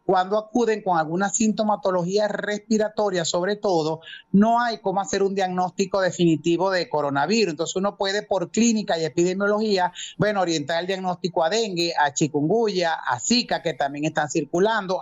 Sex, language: male, Spanish